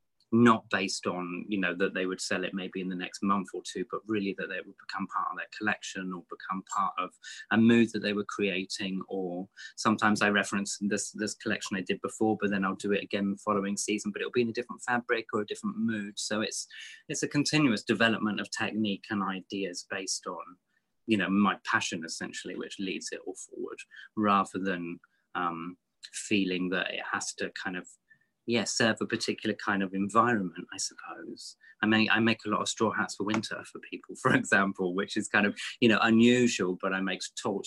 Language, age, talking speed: English, 20-39, 215 wpm